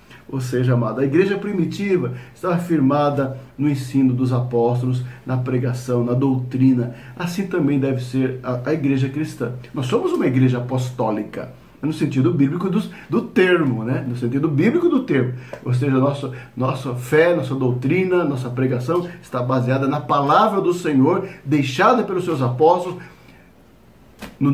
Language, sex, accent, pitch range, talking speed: Portuguese, male, Brazilian, 125-170 Hz, 150 wpm